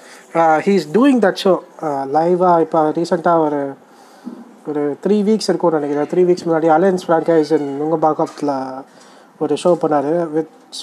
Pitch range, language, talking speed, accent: 155-185 Hz, Tamil, 140 wpm, native